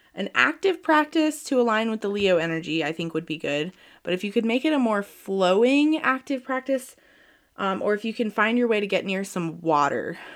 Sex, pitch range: female, 180-245 Hz